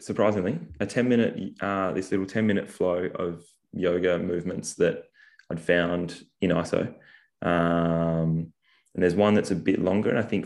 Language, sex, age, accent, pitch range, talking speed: English, male, 20-39, Australian, 85-90 Hz, 165 wpm